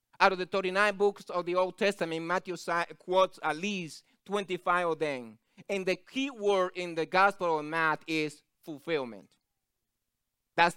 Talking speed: 155 wpm